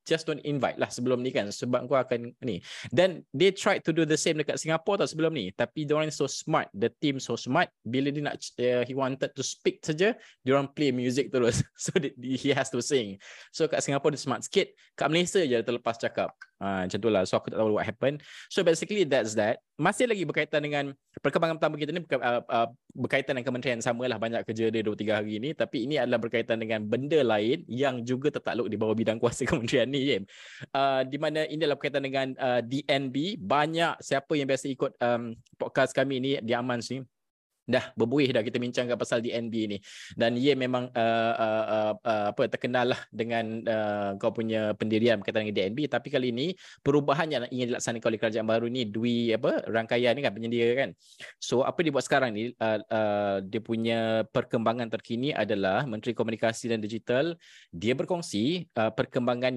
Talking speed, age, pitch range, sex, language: 195 wpm, 20-39, 115-145 Hz, male, Malay